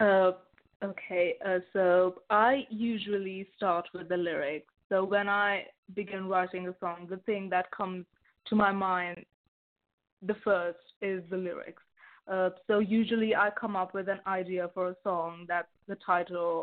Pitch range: 180-200 Hz